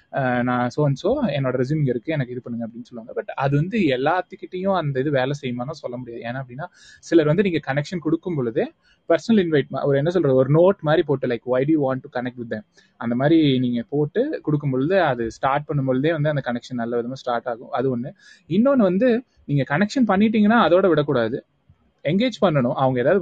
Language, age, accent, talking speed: Tamil, 20-39, native, 190 wpm